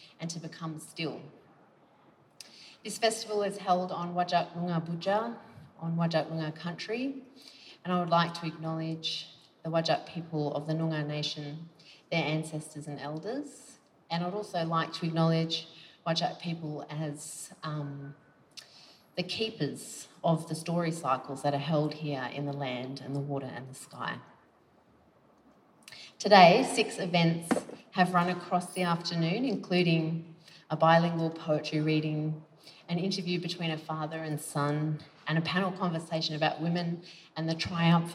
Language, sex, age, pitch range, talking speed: English, female, 30-49, 155-175 Hz, 145 wpm